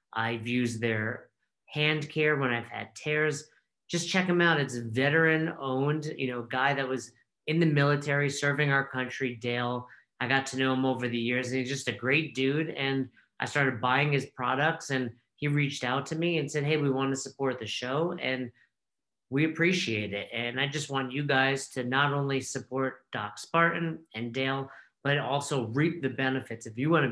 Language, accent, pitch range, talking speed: English, American, 125-145 Hz, 200 wpm